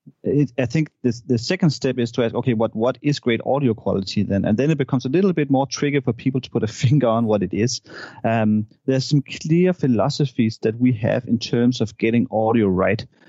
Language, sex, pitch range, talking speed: English, male, 110-130 Hz, 230 wpm